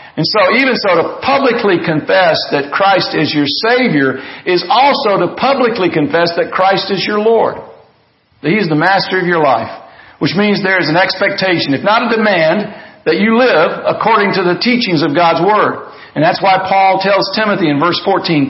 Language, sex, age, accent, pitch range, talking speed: English, male, 50-69, American, 165-205 Hz, 190 wpm